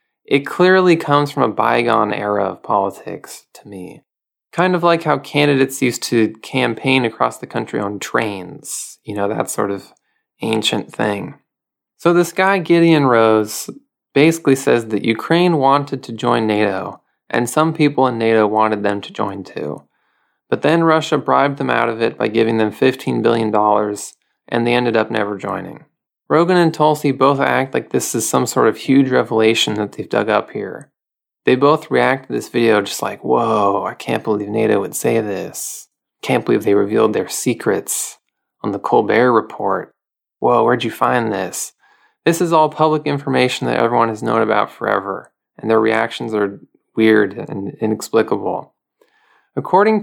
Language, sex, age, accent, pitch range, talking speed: English, male, 20-39, American, 110-155 Hz, 170 wpm